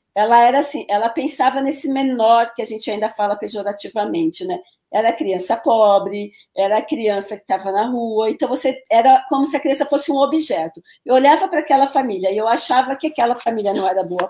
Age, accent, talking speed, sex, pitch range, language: 40-59, Brazilian, 205 wpm, female, 210-285 Hz, Portuguese